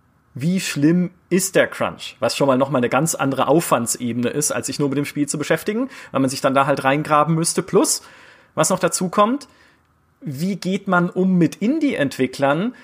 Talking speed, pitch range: 195 wpm, 140-200 Hz